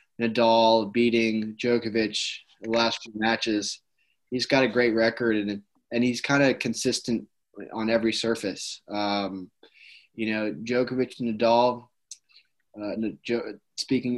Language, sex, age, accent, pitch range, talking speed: English, male, 20-39, American, 110-120 Hz, 125 wpm